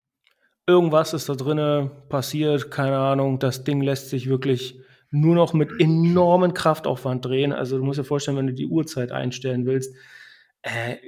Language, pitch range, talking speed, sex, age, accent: German, 135-170 Hz, 160 wpm, male, 30-49, German